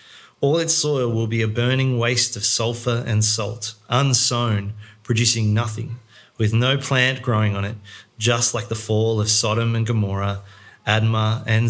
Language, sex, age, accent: English, male, 30-49, Australian